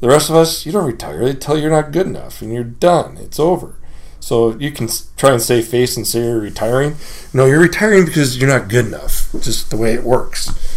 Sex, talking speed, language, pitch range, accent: male, 240 wpm, English, 100-125 Hz, American